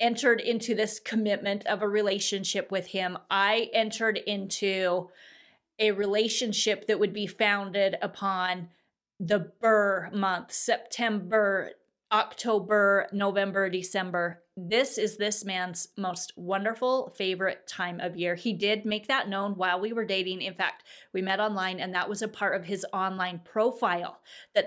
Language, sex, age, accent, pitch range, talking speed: English, female, 30-49, American, 190-225 Hz, 145 wpm